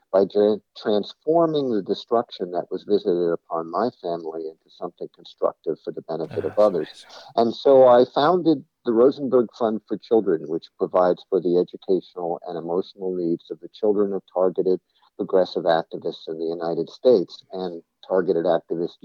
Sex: male